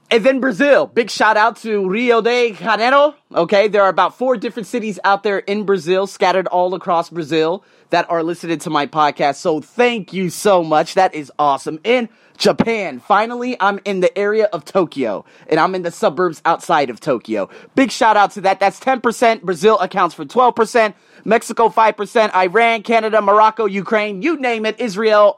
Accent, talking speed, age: American, 180 wpm, 30-49